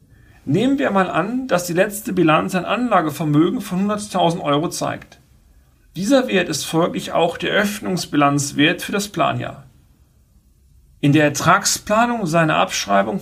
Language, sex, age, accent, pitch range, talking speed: German, male, 40-59, German, 140-190 Hz, 135 wpm